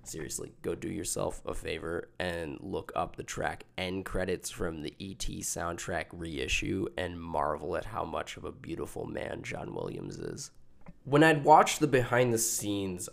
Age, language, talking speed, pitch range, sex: 20-39, English, 170 wpm, 85-110 Hz, male